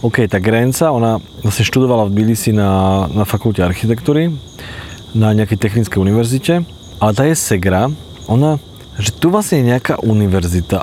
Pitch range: 95-120 Hz